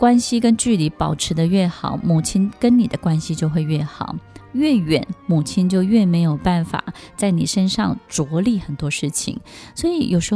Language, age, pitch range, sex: Chinese, 20-39, 165-215 Hz, female